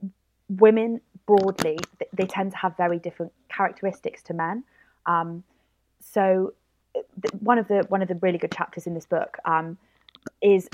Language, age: English, 20-39